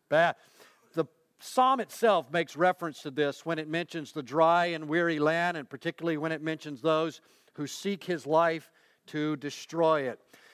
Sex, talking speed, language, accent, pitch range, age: male, 165 wpm, English, American, 165-205 Hz, 50-69